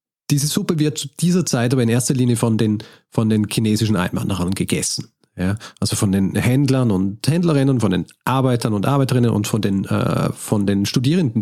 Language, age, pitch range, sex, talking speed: German, 40-59, 110-140 Hz, male, 170 wpm